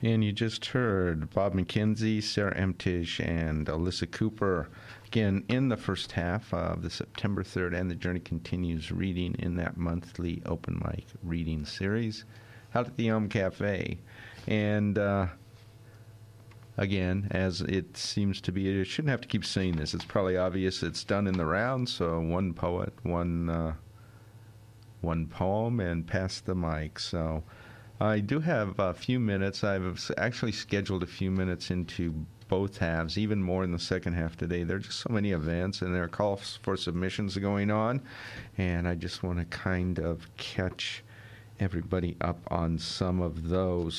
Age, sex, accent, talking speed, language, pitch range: 50-69, male, American, 165 wpm, English, 90-110 Hz